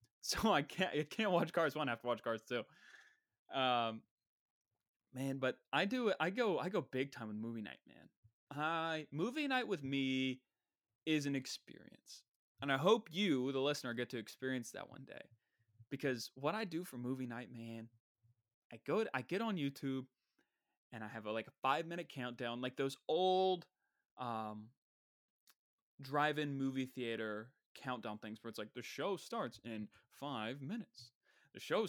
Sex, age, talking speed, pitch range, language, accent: male, 20-39, 175 wpm, 120-150 Hz, English, American